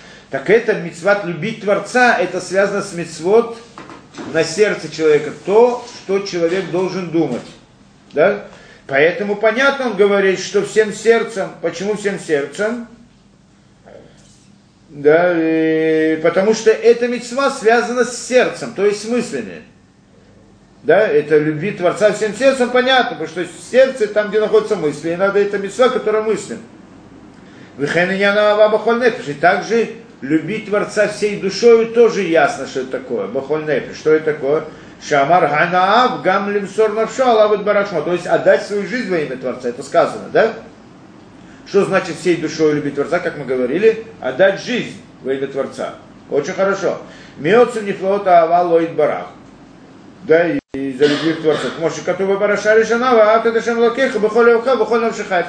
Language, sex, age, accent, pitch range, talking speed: Russian, male, 40-59, native, 170-225 Hz, 130 wpm